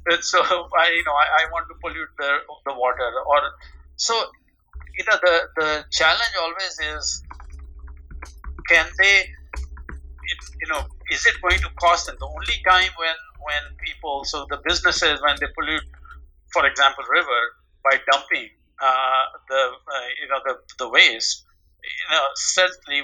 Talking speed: 160 wpm